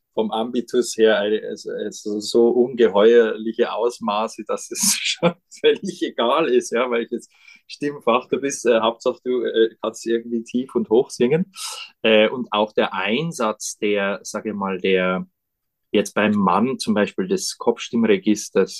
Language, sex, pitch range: German, male, 100-155 Hz